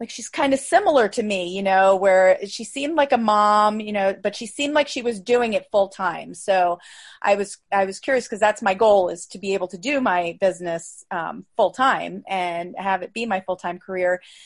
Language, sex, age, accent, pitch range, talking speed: English, female, 30-49, American, 190-230 Hz, 235 wpm